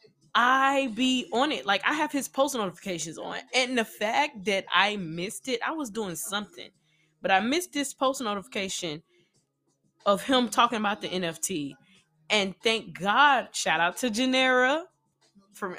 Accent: American